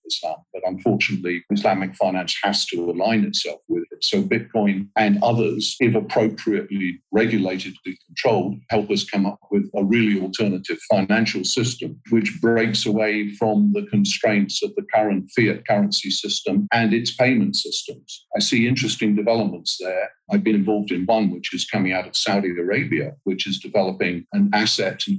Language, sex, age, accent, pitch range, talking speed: English, male, 50-69, British, 100-125 Hz, 165 wpm